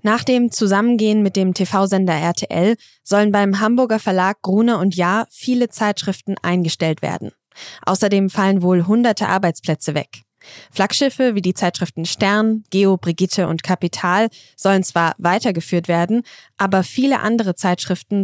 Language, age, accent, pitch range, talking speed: German, 20-39, German, 175-220 Hz, 135 wpm